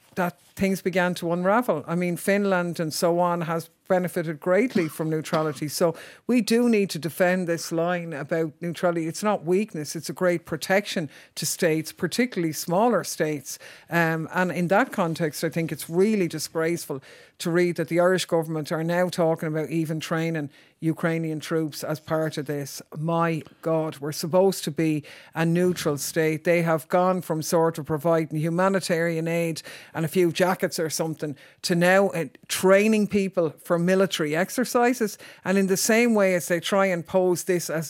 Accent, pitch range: Irish, 160-185 Hz